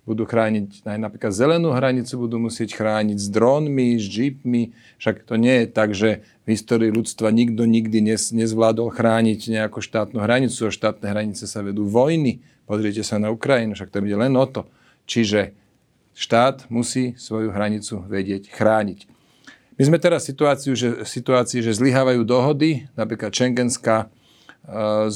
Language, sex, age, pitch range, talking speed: Slovak, male, 40-59, 110-130 Hz, 155 wpm